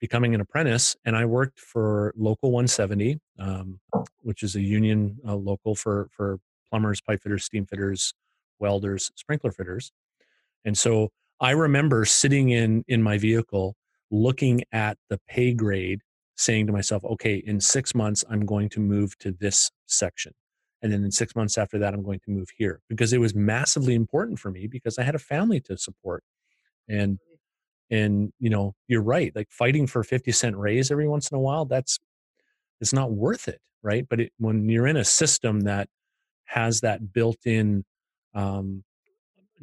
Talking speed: 175 wpm